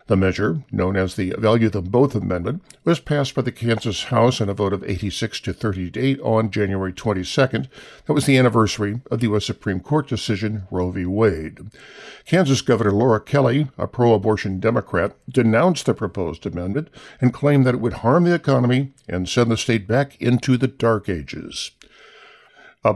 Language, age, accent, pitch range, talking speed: English, 50-69, American, 100-135 Hz, 175 wpm